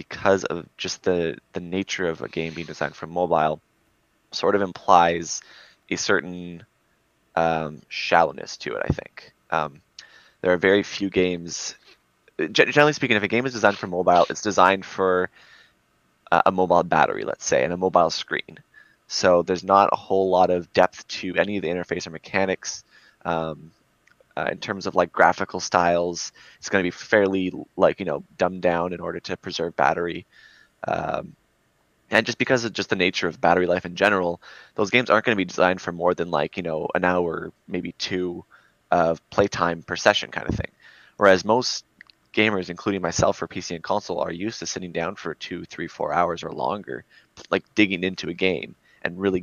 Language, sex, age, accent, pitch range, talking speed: English, male, 20-39, American, 85-100 Hz, 190 wpm